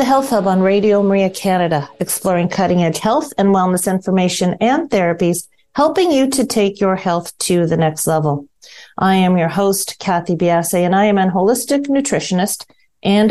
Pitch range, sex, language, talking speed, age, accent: 170-210 Hz, female, English, 170 wpm, 50-69, American